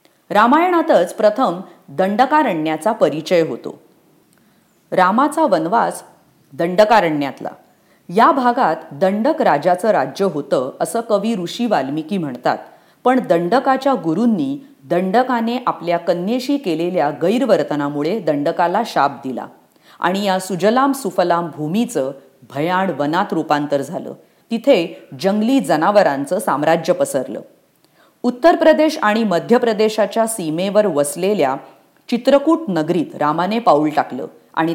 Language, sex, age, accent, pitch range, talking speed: English, female, 30-49, Indian, 160-235 Hz, 100 wpm